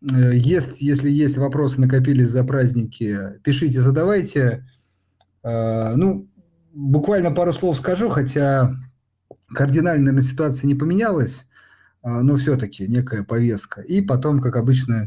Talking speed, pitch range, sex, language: 110 wpm, 110-145 Hz, male, Russian